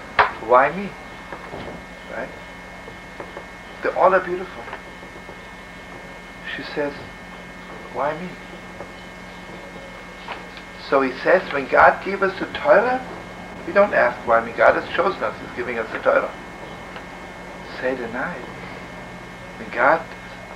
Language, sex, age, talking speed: English, male, 60-79, 115 wpm